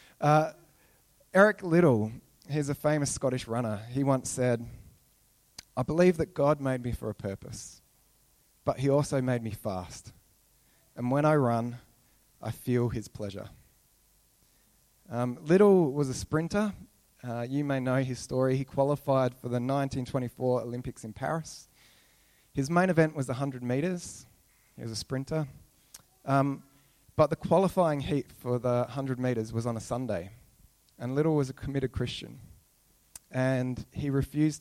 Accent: Australian